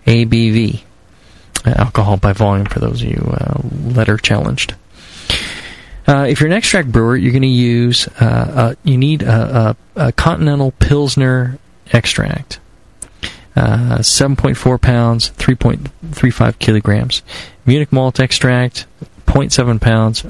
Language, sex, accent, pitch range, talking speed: English, male, American, 110-130 Hz, 125 wpm